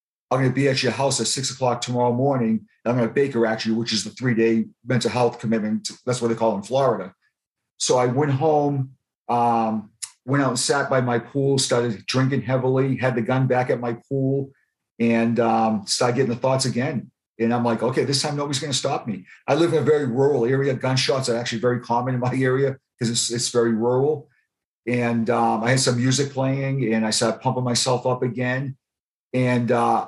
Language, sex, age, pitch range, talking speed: English, male, 50-69, 115-135 Hz, 215 wpm